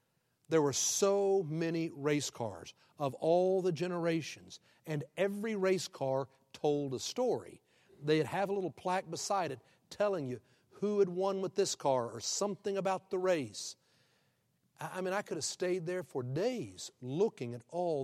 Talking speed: 165 wpm